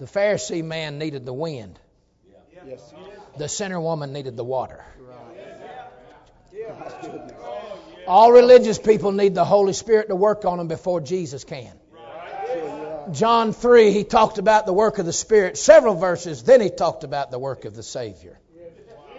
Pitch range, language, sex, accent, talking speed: 145-205 Hz, English, male, American, 145 wpm